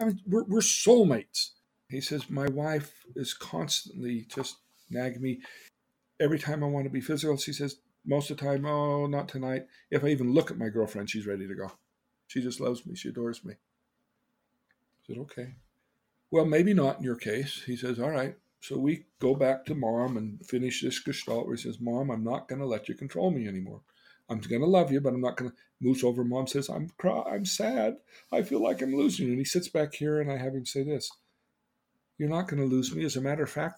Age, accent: 50-69, American